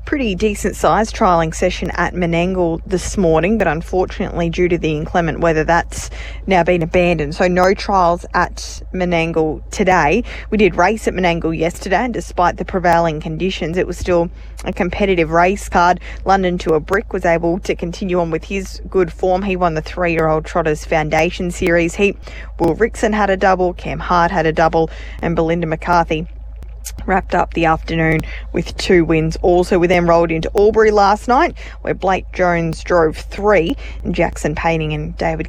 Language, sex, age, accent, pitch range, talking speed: English, female, 20-39, Australian, 165-195 Hz, 175 wpm